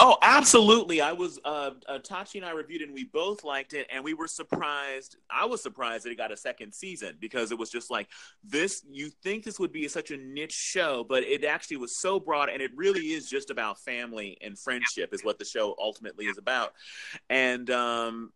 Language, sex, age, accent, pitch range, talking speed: English, male, 30-49, American, 125-175 Hz, 215 wpm